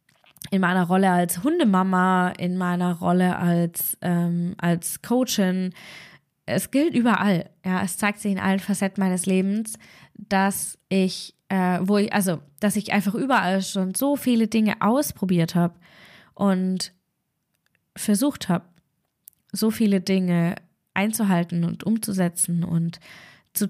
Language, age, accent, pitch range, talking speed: German, 20-39, German, 180-205 Hz, 110 wpm